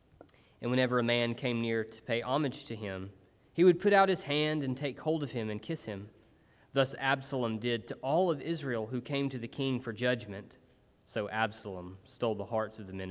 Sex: male